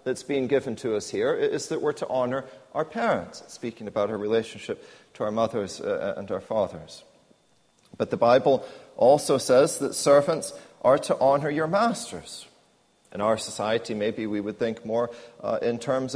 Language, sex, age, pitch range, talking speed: English, male, 40-59, 125-160 Hz, 170 wpm